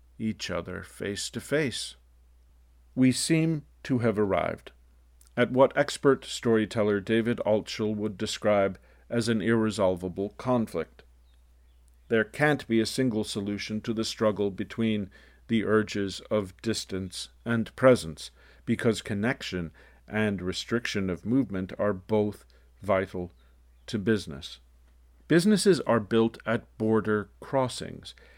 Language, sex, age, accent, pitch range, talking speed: English, male, 50-69, American, 90-115 Hz, 115 wpm